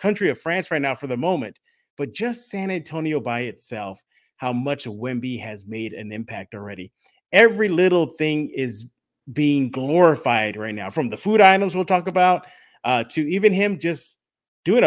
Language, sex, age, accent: English, male, 30-49, American